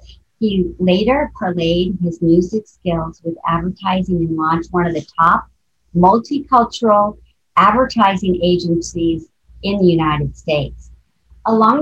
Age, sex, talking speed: 50-69, male, 110 wpm